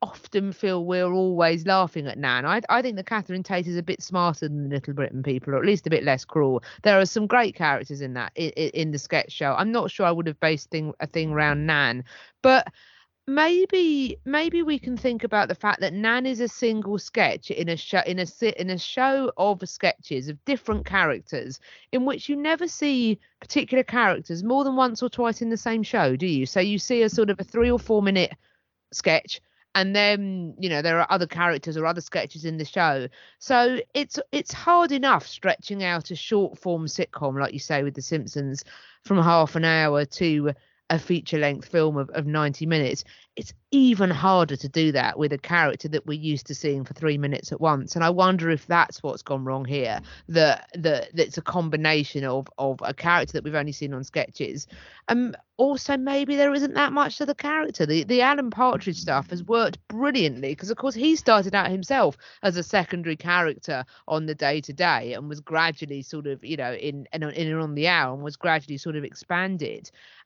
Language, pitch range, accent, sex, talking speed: English, 150-230 Hz, British, female, 215 wpm